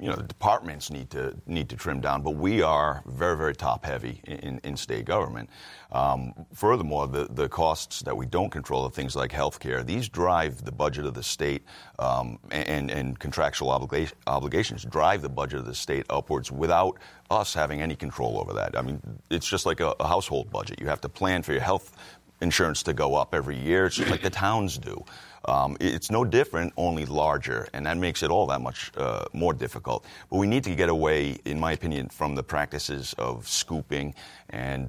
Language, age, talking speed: English, 40-59, 205 wpm